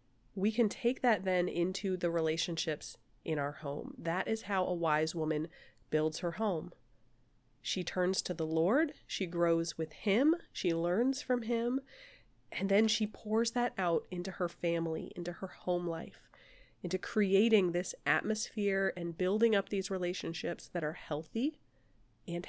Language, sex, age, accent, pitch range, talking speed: English, female, 30-49, American, 165-225 Hz, 155 wpm